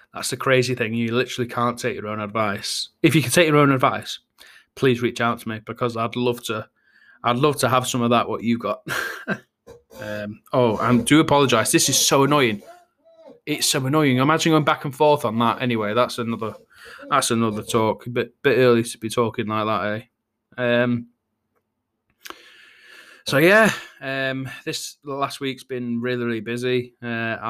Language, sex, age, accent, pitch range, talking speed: English, male, 20-39, British, 115-130 Hz, 185 wpm